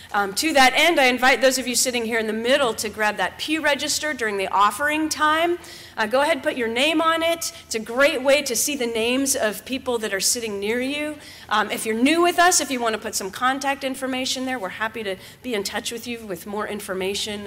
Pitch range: 185-240 Hz